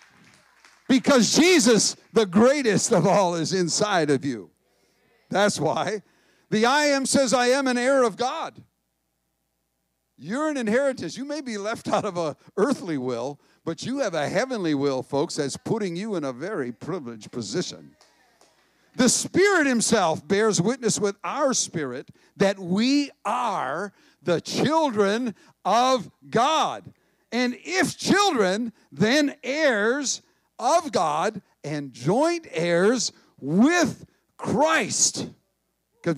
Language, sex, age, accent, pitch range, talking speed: English, male, 60-79, American, 165-245 Hz, 130 wpm